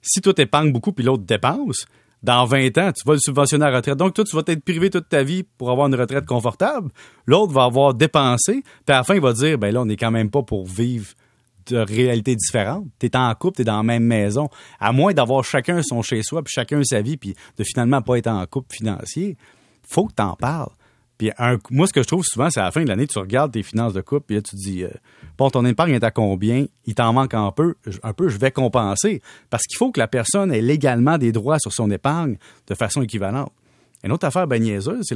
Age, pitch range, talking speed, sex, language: 30-49, 110-145 Hz, 255 wpm, male, French